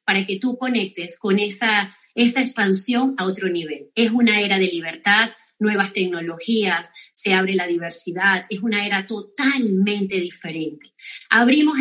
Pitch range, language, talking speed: 195-255 Hz, Spanish, 140 wpm